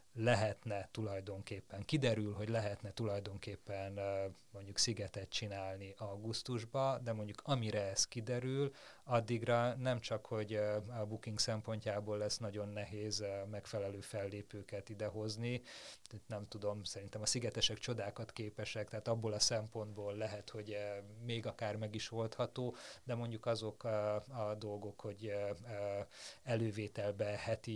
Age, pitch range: 30-49, 100-115 Hz